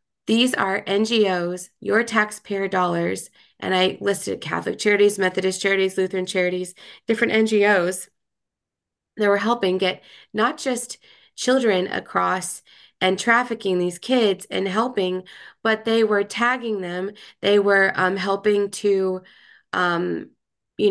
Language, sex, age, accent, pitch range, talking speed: English, female, 20-39, American, 185-210 Hz, 125 wpm